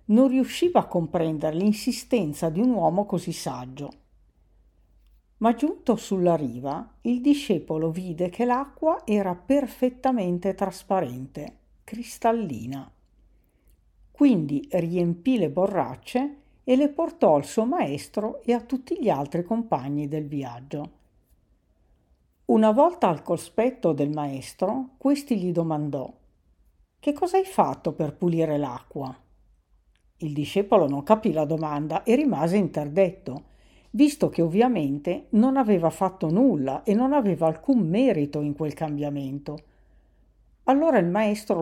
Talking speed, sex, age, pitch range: 120 wpm, female, 50-69, 145-230 Hz